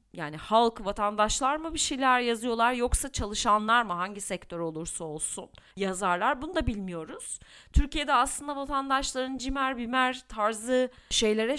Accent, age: Turkish, 40-59